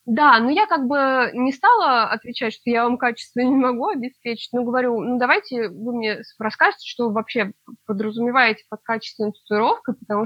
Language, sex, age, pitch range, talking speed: Russian, female, 20-39, 215-265 Hz, 175 wpm